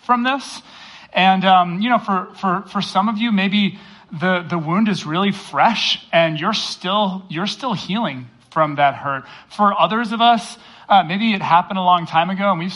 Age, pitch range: 30-49, 155-200 Hz